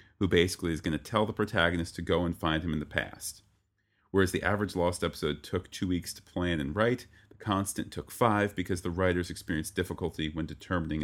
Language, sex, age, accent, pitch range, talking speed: English, male, 40-59, American, 80-105 Hz, 210 wpm